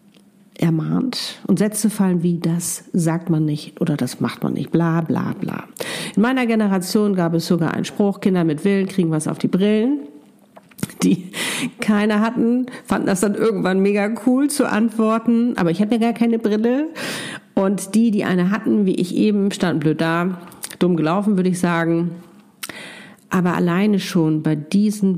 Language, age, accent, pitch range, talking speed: German, 50-69, German, 160-210 Hz, 170 wpm